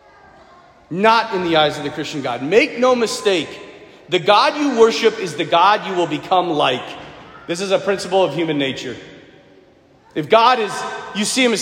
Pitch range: 210-295 Hz